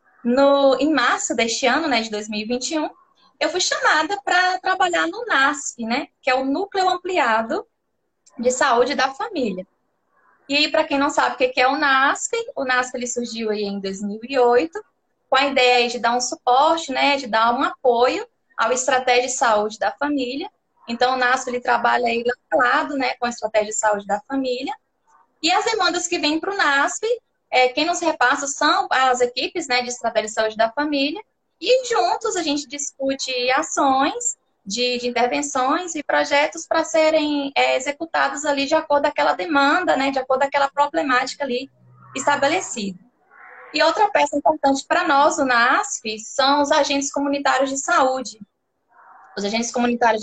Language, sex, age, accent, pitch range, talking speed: Portuguese, female, 20-39, Brazilian, 245-310 Hz, 170 wpm